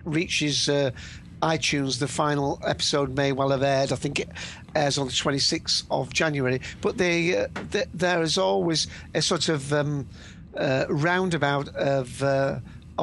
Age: 50-69